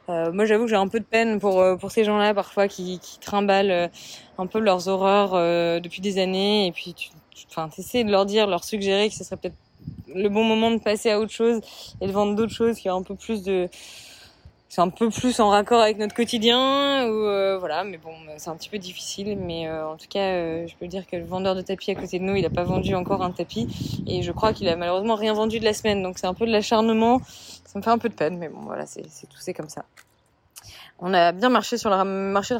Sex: female